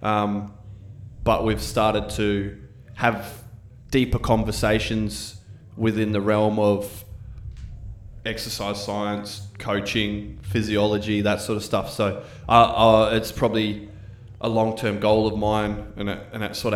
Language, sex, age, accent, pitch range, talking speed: English, male, 20-39, Australian, 100-115 Hz, 120 wpm